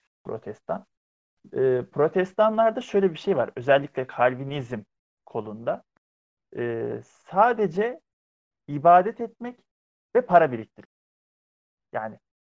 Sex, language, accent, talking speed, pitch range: male, Turkish, native, 85 wpm, 125-195 Hz